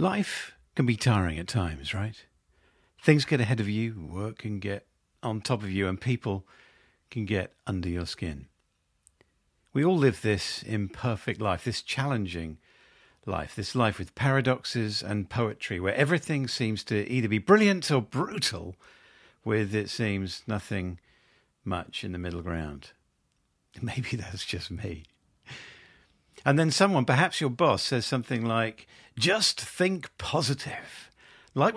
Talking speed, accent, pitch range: 145 wpm, British, 95-135 Hz